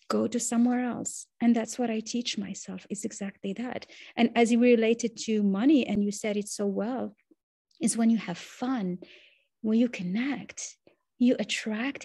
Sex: female